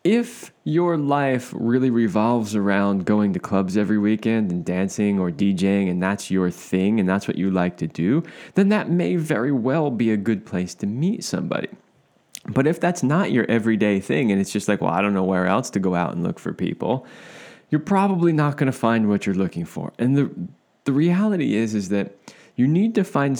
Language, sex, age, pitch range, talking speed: English, male, 20-39, 100-140 Hz, 215 wpm